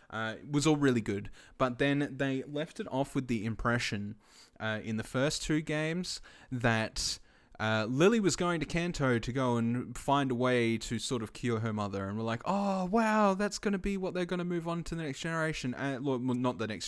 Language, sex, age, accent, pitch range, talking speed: English, male, 20-39, Australian, 110-135 Hz, 225 wpm